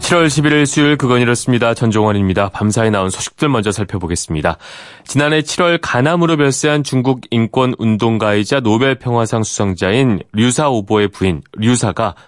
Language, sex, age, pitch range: Korean, male, 30-49, 100-140 Hz